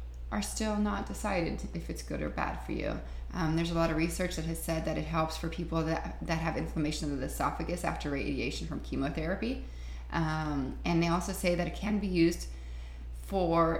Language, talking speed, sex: English, 205 wpm, female